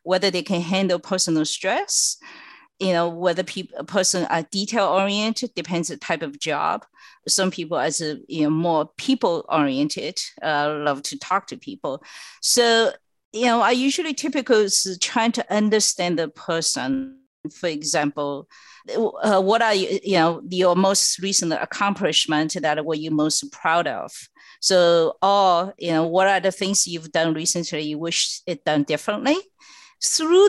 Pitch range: 160-220 Hz